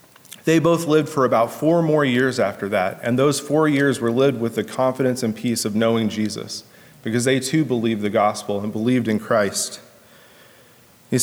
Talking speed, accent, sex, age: 185 wpm, American, male, 30-49